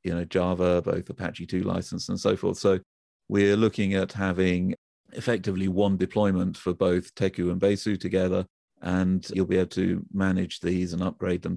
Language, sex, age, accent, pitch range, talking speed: English, male, 40-59, British, 90-100 Hz, 175 wpm